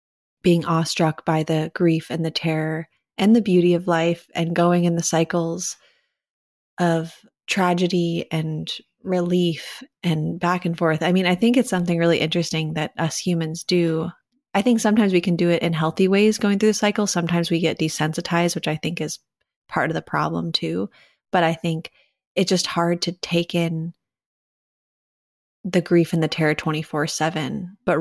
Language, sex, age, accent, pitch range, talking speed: English, female, 20-39, American, 165-190 Hz, 175 wpm